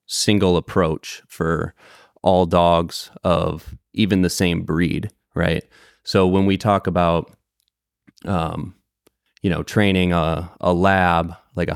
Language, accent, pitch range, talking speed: English, American, 85-95 Hz, 130 wpm